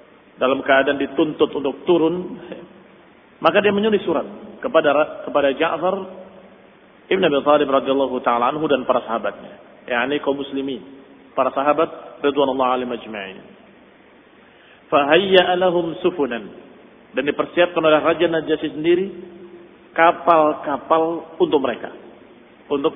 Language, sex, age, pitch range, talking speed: Indonesian, male, 40-59, 150-195 Hz, 95 wpm